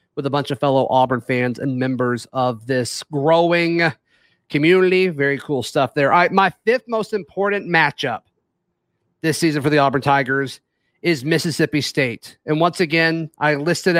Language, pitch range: English, 145-175 Hz